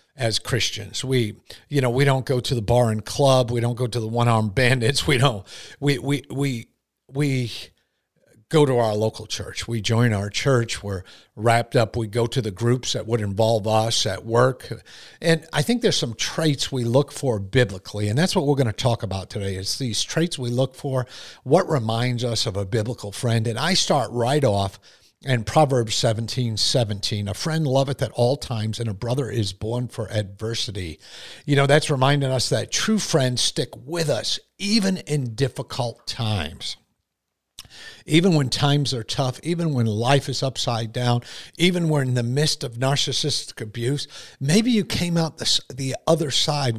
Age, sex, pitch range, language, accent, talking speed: 50-69, male, 115-145 Hz, English, American, 185 wpm